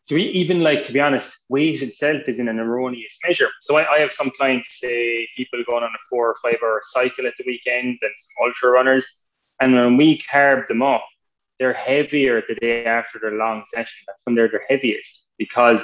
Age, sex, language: 20-39, male, English